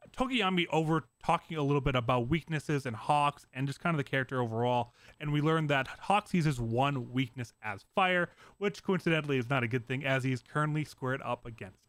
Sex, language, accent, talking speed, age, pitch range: male, English, American, 200 wpm, 30-49, 125-160 Hz